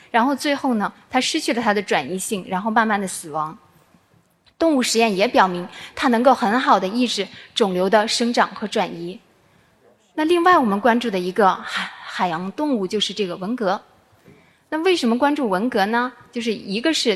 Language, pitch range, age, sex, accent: Chinese, 200-265 Hz, 20-39, female, native